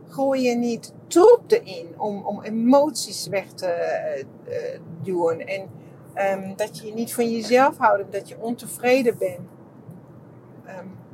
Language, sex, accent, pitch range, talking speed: English, female, Dutch, 160-235 Hz, 135 wpm